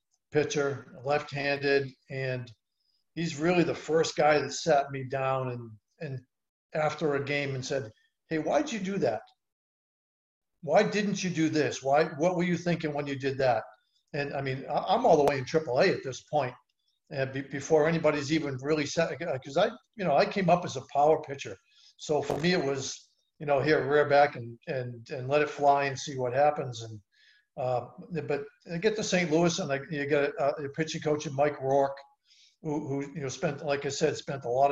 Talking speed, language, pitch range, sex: 205 wpm, English, 130-160 Hz, male